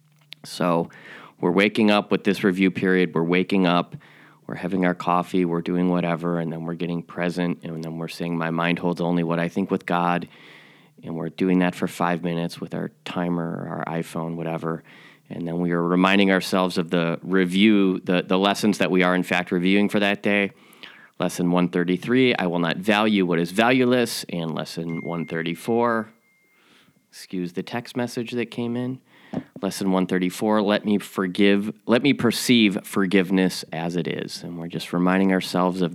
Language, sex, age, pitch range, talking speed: English, male, 30-49, 85-110 Hz, 180 wpm